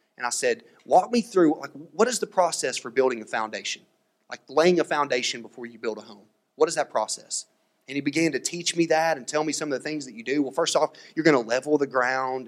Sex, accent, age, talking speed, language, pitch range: male, American, 30-49, 260 wpm, English, 135-180 Hz